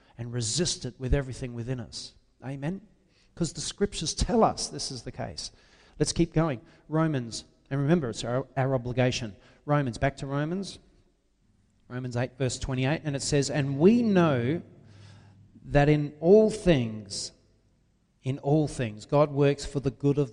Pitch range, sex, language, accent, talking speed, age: 120-170 Hz, male, English, Australian, 160 wpm, 40-59